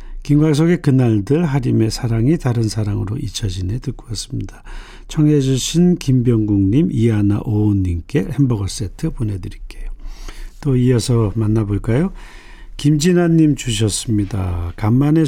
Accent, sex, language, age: native, male, Korean, 40-59